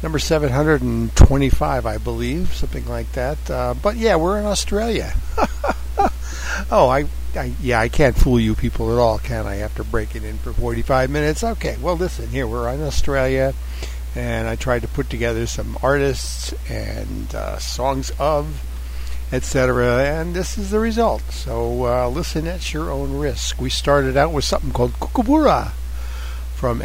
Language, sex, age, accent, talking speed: English, male, 60-79, American, 160 wpm